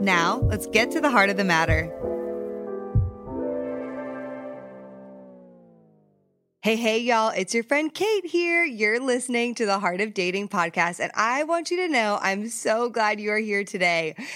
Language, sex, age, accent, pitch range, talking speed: English, female, 20-39, American, 180-255 Hz, 160 wpm